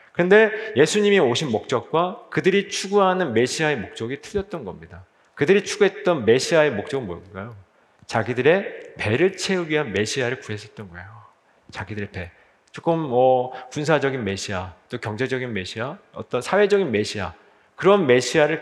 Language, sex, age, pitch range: Korean, male, 40-59, 120-185 Hz